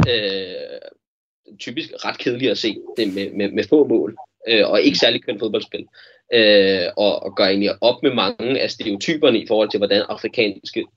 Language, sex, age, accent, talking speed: Danish, male, 30-49, native, 175 wpm